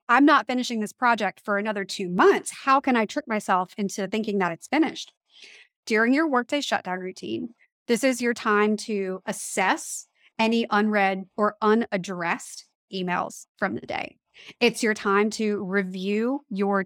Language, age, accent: English, 30-49, American